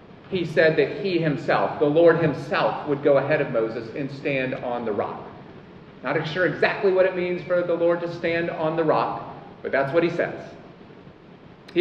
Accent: American